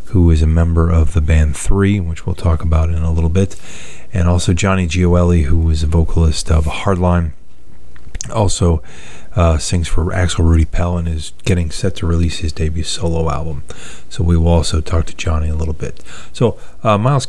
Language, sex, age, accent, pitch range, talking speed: English, male, 30-49, American, 80-95 Hz, 195 wpm